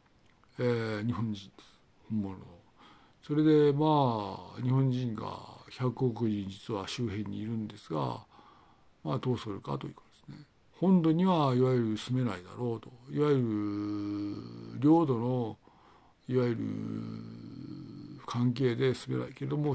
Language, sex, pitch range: Japanese, male, 110-145 Hz